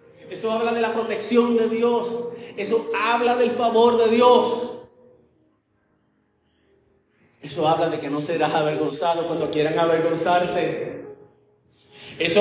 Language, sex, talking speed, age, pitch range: Spanish, male, 115 wpm, 30-49, 155-205 Hz